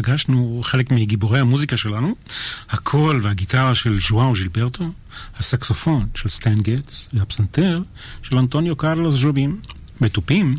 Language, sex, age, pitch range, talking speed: Hebrew, male, 40-59, 110-145 Hz, 115 wpm